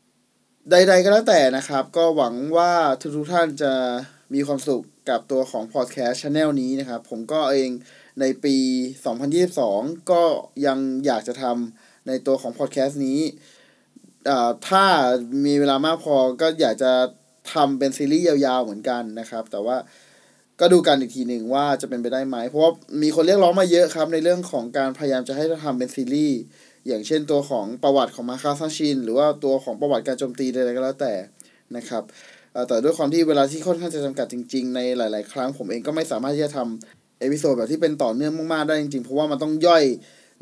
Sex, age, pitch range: male, 20-39, 130-160 Hz